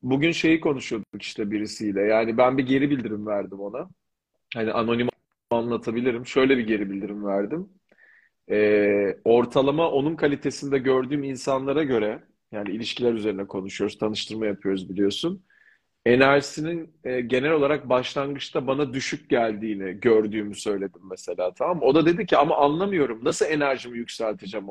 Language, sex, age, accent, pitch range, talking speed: Turkish, male, 40-59, native, 115-150 Hz, 135 wpm